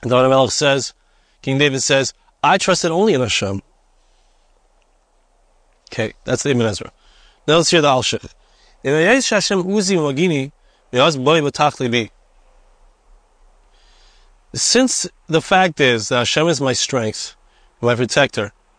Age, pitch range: 30-49, 130-170 Hz